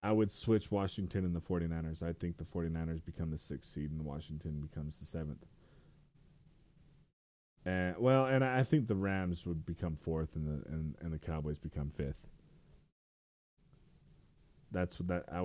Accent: American